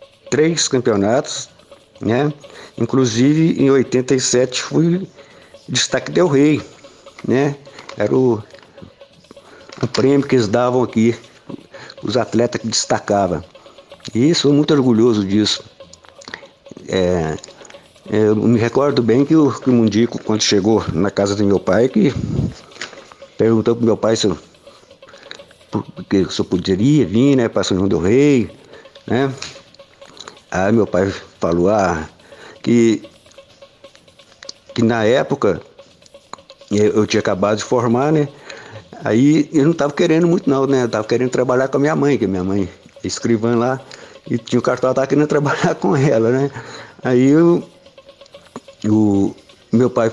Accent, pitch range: Brazilian, 110-145 Hz